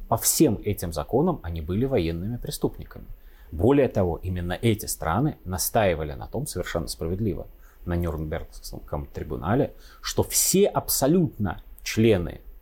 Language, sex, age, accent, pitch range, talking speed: Russian, male, 30-49, native, 90-125 Hz, 120 wpm